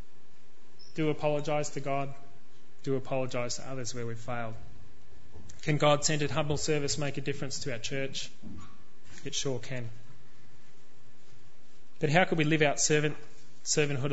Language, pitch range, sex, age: English, 125-150 Hz, male, 20-39